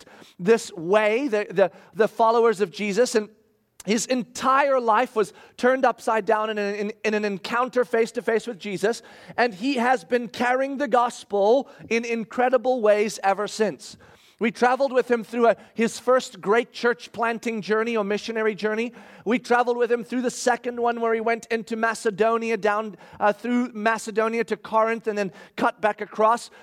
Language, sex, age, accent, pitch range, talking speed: English, male, 40-59, American, 220-255 Hz, 170 wpm